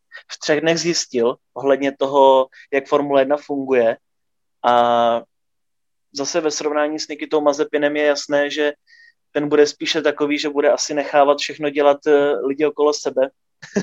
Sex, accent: male, native